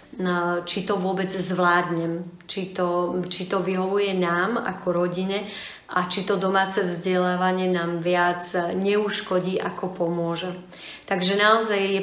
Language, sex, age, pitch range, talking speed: Slovak, female, 30-49, 175-200 Hz, 125 wpm